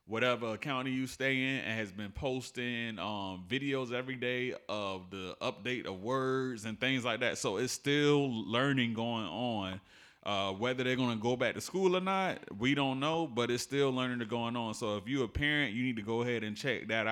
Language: English